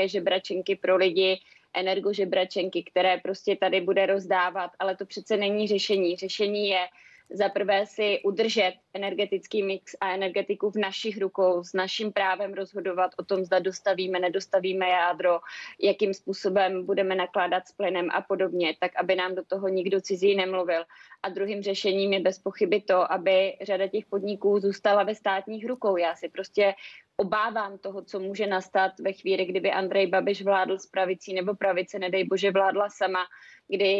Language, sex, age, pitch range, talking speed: Czech, female, 20-39, 185-200 Hz, 160 wpm